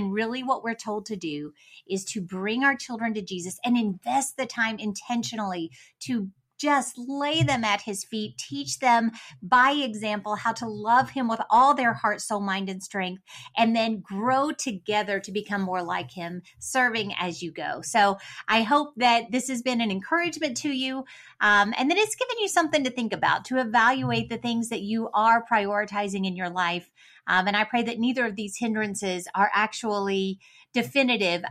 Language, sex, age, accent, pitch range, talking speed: English, female, 30-49, American, 205-265 Hz, 190 wpm